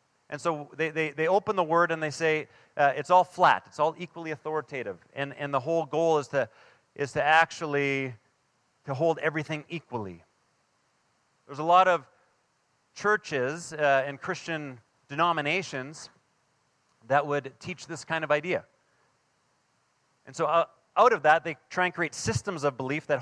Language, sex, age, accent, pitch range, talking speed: English, male, 30-49, American, 145-170 Hz, 165 wpm